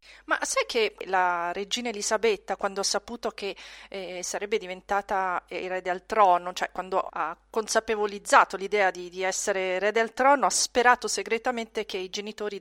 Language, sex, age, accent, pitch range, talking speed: Italian, female, 40-59, native, 190-225 Hz, 155 wpm